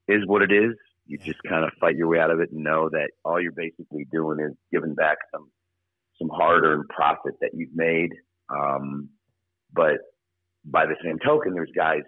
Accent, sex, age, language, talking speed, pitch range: American, male, 50-69, English, 195 wpm, 75-90 Hz